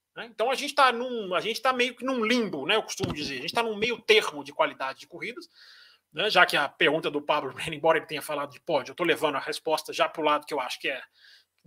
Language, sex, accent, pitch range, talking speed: Portuguese, male, Brazilian, 175-275 Hz, 260 wpm